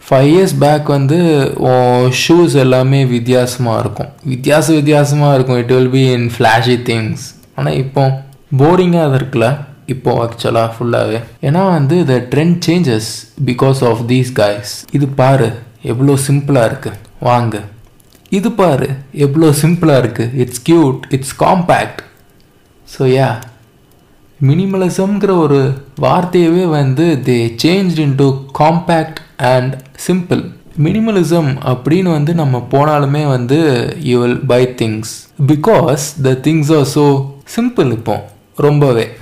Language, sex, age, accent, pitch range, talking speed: Tamil, male, 20-39, native, 125-155 Hz, 120 wpm